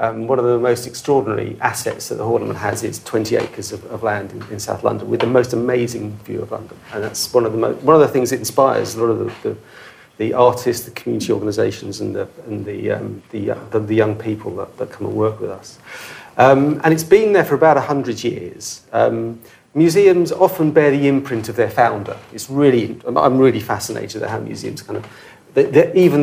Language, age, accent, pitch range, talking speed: English, 40-59, British, 115-150 Hz, 220 wpm